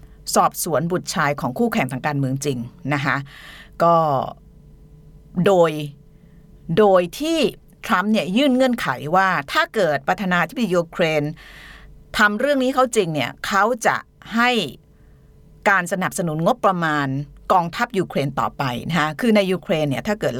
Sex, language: female, Thai